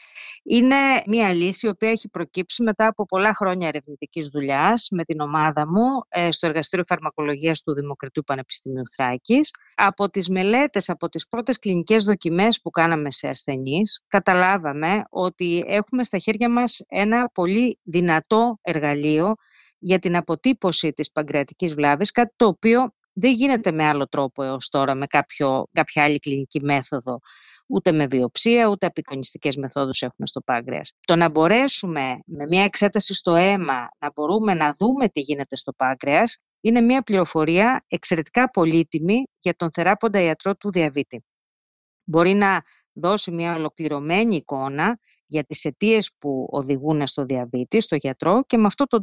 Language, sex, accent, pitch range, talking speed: Greek, female, native, 150-215 Hz, 150 wpm